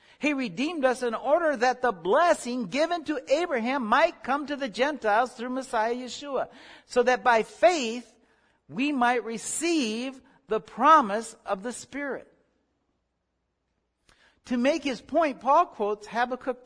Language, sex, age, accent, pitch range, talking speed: English, male, 60-79, American, 200-275 Hz, 135 wpm